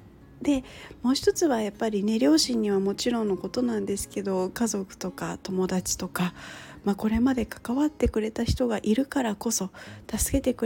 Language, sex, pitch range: Japanese, female, 180-255 Hz